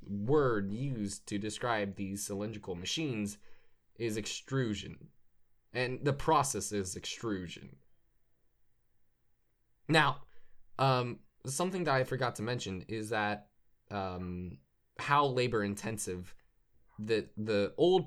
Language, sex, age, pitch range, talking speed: English, male, 20-39, 95-125 Hz, 105 wpm